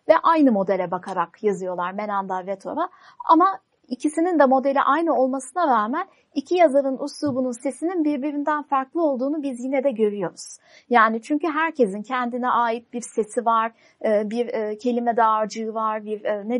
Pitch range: 220-285 Hz